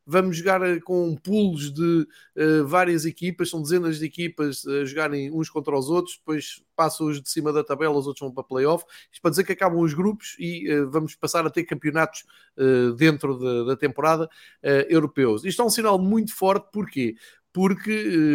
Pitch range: 140-175 Hz